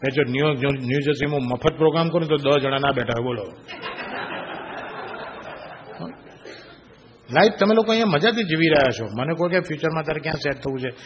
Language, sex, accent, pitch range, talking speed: Gujarati, male, native, 135-195 Hz, 165 wpm